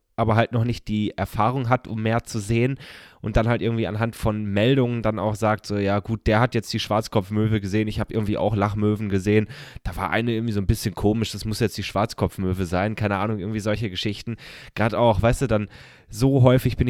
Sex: male